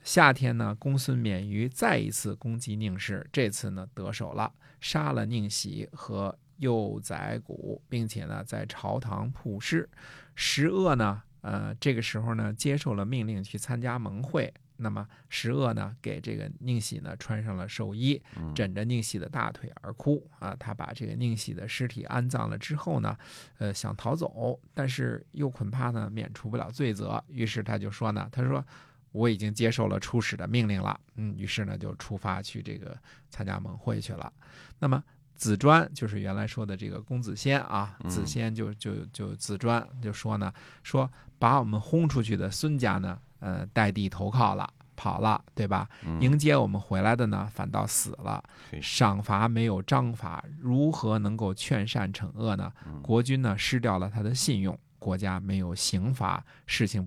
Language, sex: Chinese, male